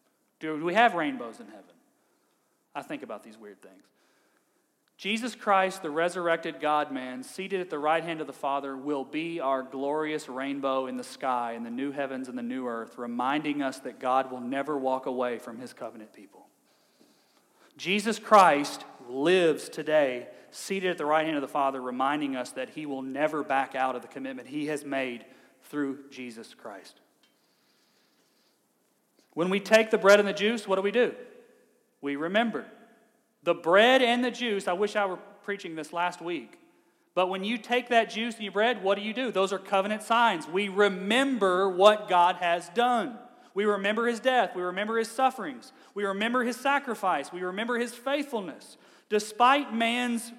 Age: 40-59